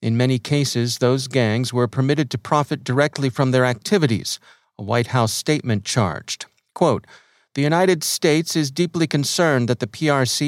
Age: 40-59